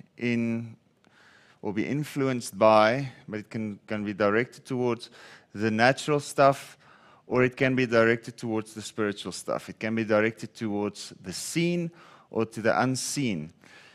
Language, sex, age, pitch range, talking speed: English, male, 40-59, 110-135 Hz, 150 wpm